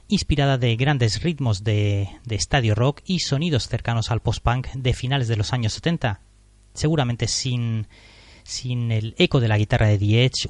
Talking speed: 170 wpm